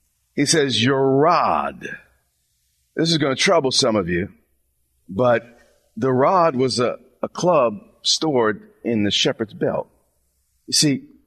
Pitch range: 130-205 Hz